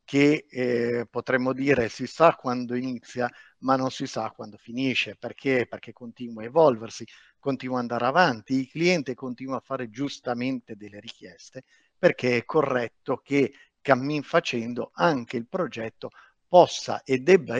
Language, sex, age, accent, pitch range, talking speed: Italian, male, 50-69, native, 115-135 Hz, 145 wpm